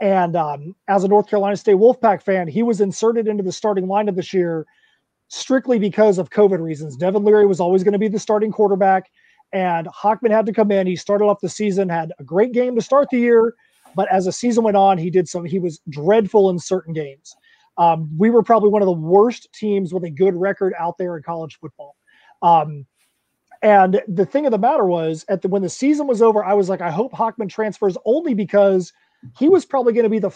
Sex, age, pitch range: male, 30-49, 180-220 Hz